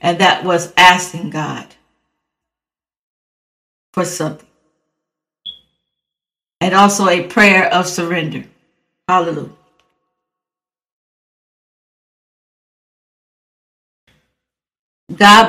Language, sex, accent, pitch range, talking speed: English, female, American, 175-220 Hz, 60 wpm